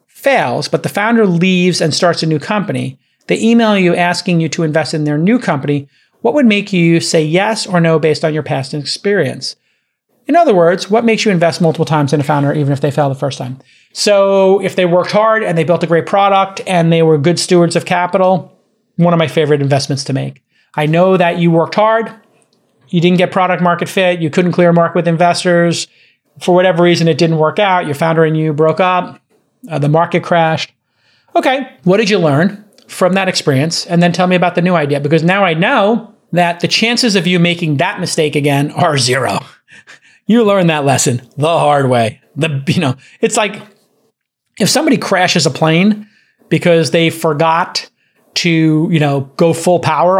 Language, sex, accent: English, male, American